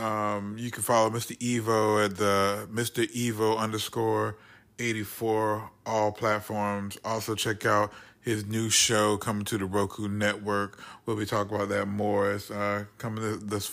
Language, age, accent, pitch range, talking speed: English, 30-49, American, 100-110 Hz, 155 wpm